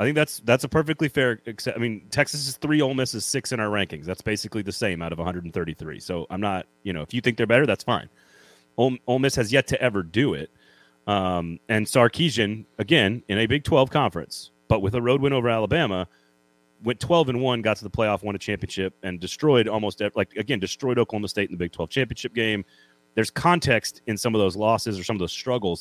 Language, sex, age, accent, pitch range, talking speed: English, male, 30-49, American, 95-135 Hz, 240 wpm